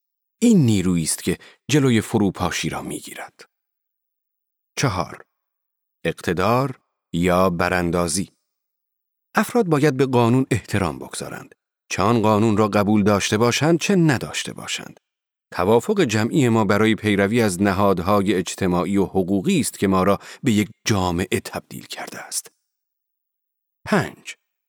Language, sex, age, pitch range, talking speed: Persian, male, 40-59, 100-145 Hz, 120 wpm